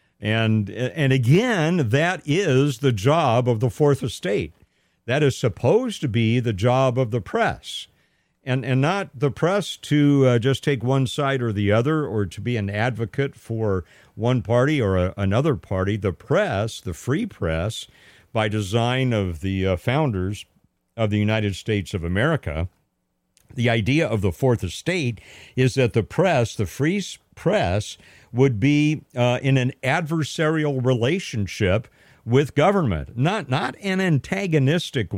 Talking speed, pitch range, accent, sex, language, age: 155 wpm, 105-140 Hz, American, male, English, 50-69